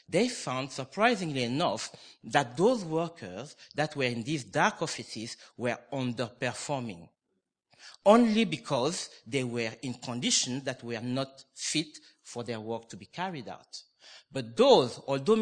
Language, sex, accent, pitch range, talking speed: English, male, French, 120-155 Hz, 135 wpm